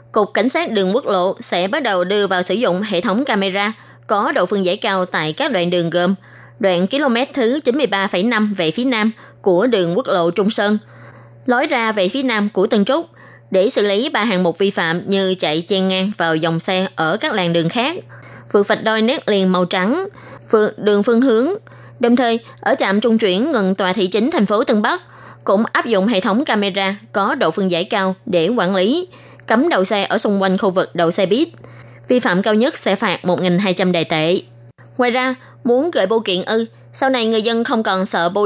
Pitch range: 180-225 Hz